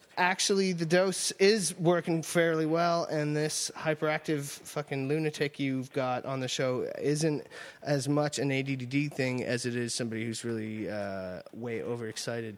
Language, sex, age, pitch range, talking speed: English, male, 20-39, 110-145 Hz, 155 wpm